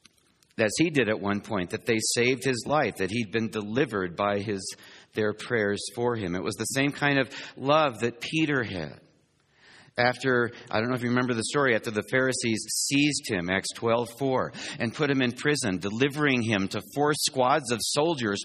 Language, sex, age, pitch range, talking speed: English, male, 50-69, 120-155 Hz, 190 wpm